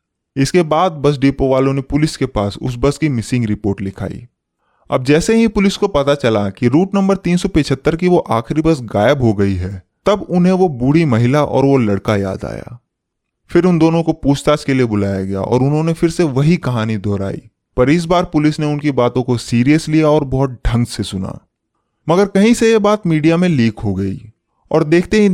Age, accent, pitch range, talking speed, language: 20-39, native, 110-170 Hz, 205 wpm, Hindi